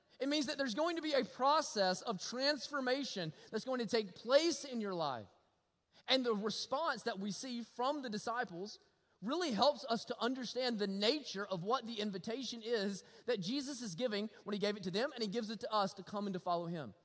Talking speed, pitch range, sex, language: 220 wpm, 205-270 Hz, male, English